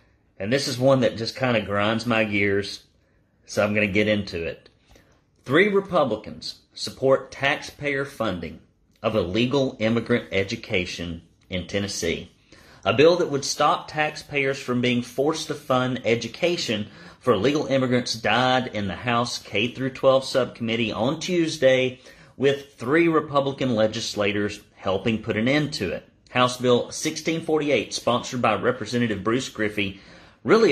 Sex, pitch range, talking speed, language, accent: male, 105-135 Hz, 140 wpm, English, American